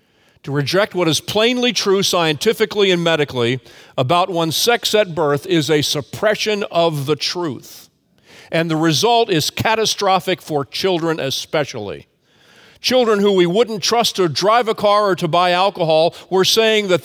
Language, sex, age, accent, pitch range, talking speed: English, male, 50-69, American, 145-205 Hz, 155 wpm